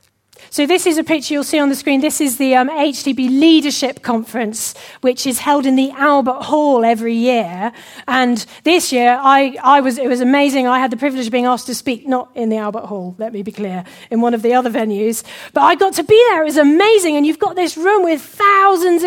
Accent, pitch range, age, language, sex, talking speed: British, 245-330 Hz, 40-59, English, female, 235 wpm